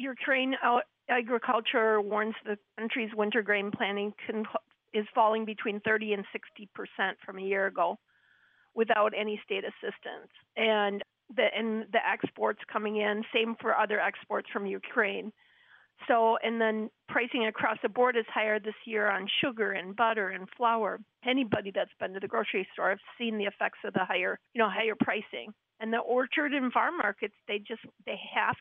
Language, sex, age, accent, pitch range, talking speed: English, female, 40-59, American, 205-230 Hz, 170 wpm